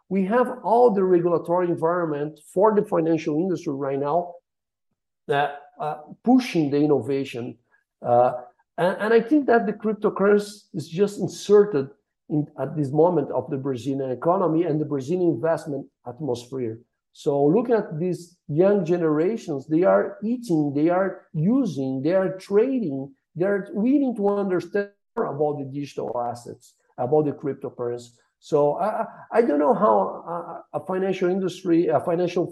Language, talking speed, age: English, 145 wpm, 50-69